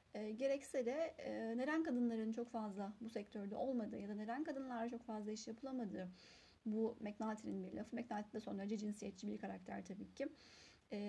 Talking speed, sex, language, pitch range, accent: 175 wpm, female, Turkish, 220-270 Hz, native